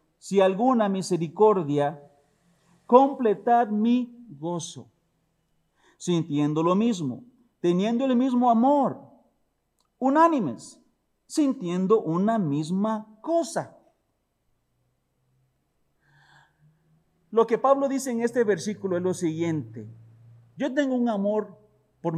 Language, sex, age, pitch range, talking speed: Spanish, male, 50-69, 145-220 Hz, 90 wpm